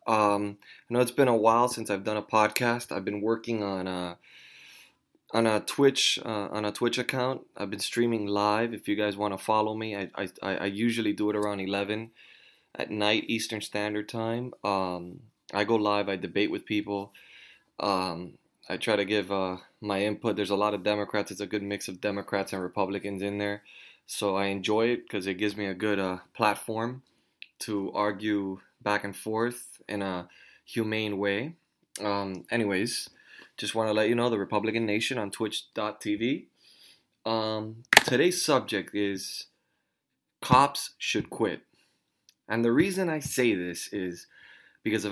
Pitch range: 100-115 Hz